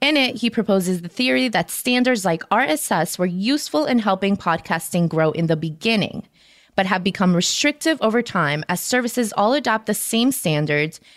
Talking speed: 170 wpm